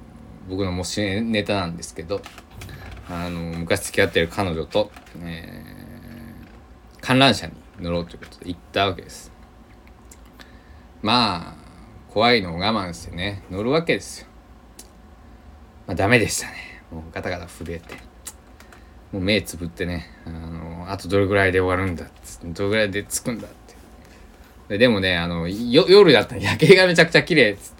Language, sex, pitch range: Japanese, male, 80-105 Hz